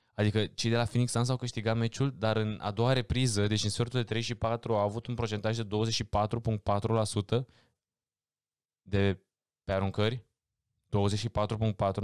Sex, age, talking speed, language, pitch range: male, 20-39, 155 wpm, English, 100-120 Hz